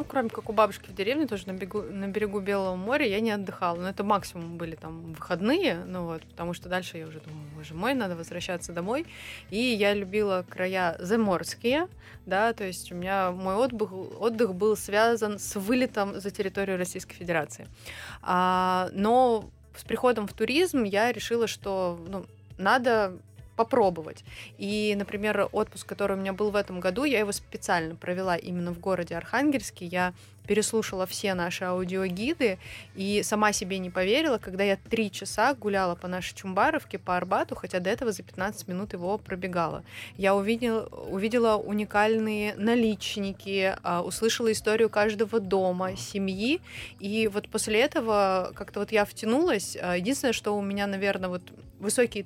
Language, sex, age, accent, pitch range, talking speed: Russian, female, 20-39, native, 185-215 Hz, 155 wpm